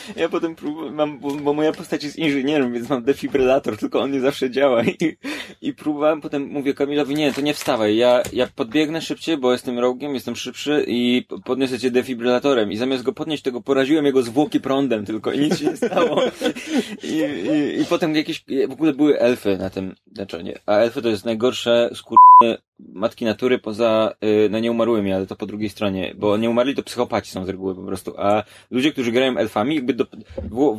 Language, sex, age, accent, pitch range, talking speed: Polish, male, 20-39, native, 120-150 Hz, 195 wpm